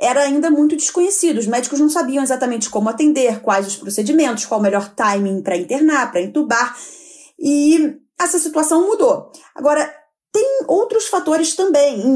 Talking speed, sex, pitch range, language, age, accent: 160 wpm, female, 220-320 Hz, Portuguese, 30-49, Brazilian